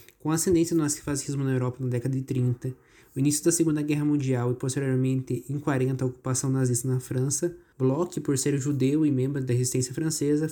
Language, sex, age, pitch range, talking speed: Portuguese, male, 20-39, 130-155 Hz, 195 wpm